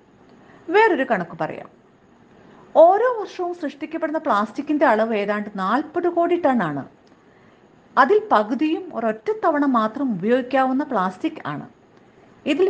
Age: 50-69